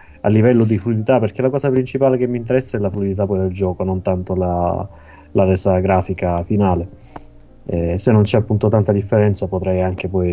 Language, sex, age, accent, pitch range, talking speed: Italian, male, 30-49, native, 90-105 Hz, 200 wpm